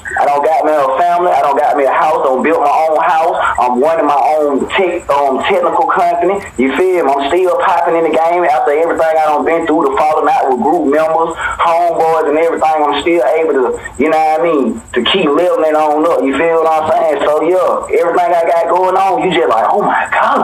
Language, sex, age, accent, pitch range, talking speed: English, male, 20-39, American, 145-190 Hz, 270 wpm